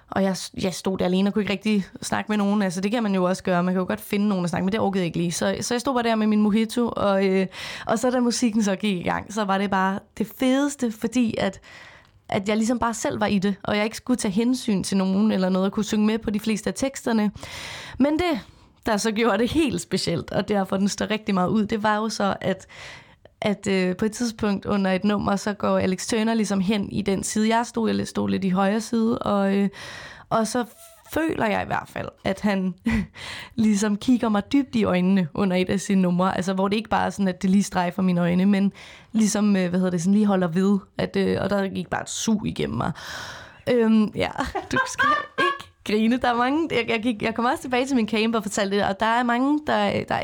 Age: 20-39